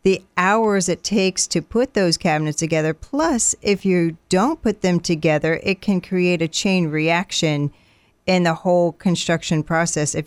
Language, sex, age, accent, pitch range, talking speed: English, female, 40-59, American, 150-180 Hz, 165 wpm